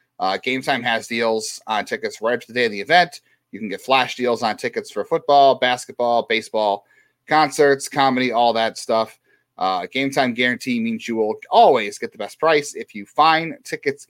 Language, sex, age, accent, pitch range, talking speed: English, male, 30-49, American, 115-145 Hz, 195 wpm